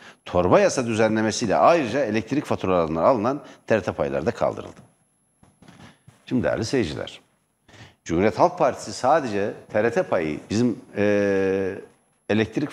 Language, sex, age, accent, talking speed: Turkish, male, 60-79, native, 110 wpm